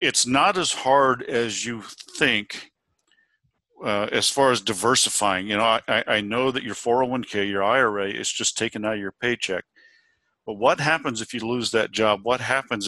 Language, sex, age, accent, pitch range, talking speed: English, male, 50-69, American, 105-135 Hz, 180 wpm